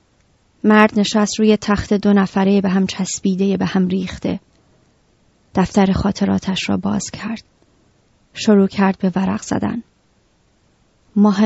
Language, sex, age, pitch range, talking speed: Persian, female, 30-49, 185-205 Hz, 120 wpm